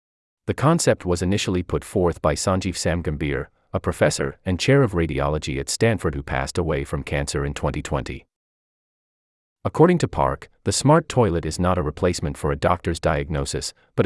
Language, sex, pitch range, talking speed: English, male, 75-120 Hz, 165 wpm